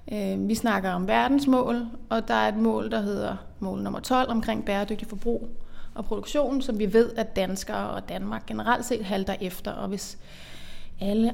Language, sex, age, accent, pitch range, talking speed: Danish, female, 30-49, native, 200-235 Hz, 175 wpm